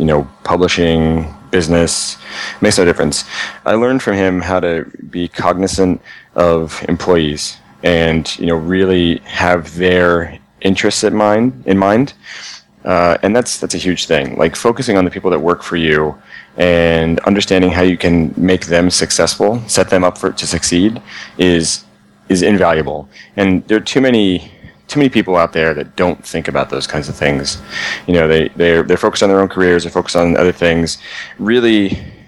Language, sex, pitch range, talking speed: English, male, 80-95 Hz, 180 wpm